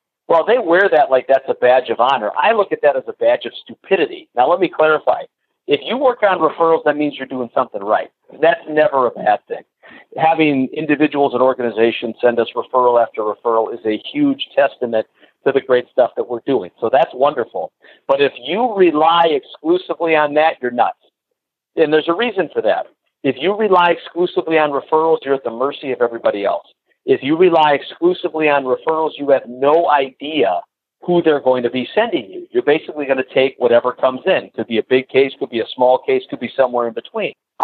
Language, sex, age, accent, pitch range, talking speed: English, male, 50-69, American, 125-170 Hz, 205 wpm